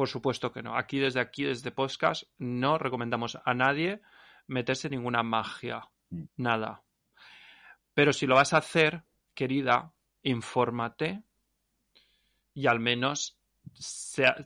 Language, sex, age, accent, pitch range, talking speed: Spanish, male, 30-49, Spanish, 120-145 Hz, 120 wpm